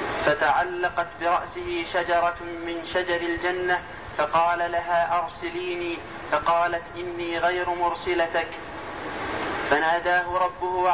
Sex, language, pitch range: male, Arabic, 170-180 Hz